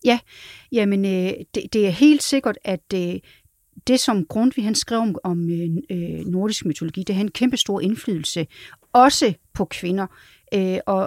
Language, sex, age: Danish, female, 40-59